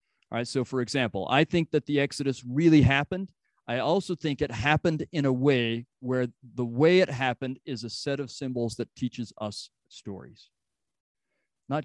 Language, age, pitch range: English, 40-59, 115-150 Hz